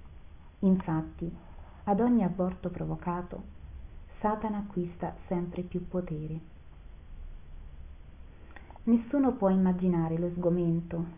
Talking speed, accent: 80 wpm, native